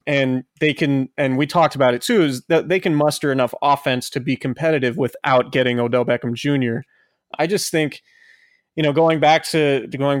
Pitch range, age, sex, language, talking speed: 130-155 Hz, 20-39, male, English, 195 wpm